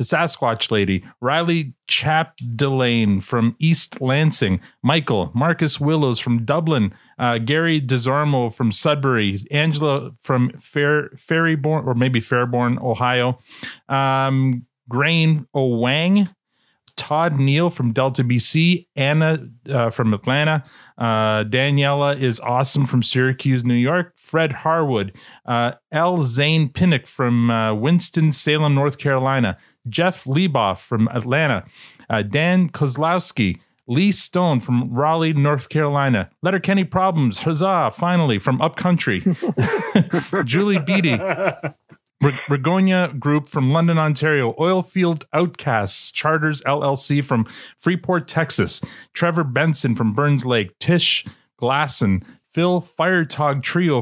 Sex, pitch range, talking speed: male, 125-165 Hz, 115 wpm